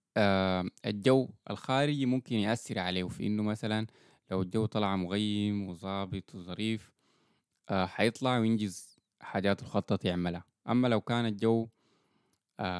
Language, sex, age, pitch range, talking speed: Arabic, male, 20-39, 100-125 Hz, 120 wpm